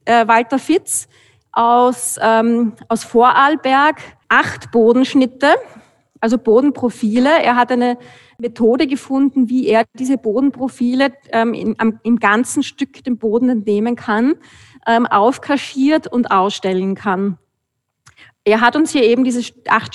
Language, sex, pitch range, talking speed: German, female, 225-260 Hz, 125 wpm